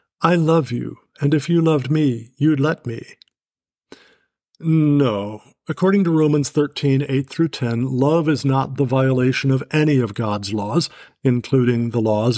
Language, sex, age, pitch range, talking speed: English, male, 50-69, 130-155 Hz, 145 wpm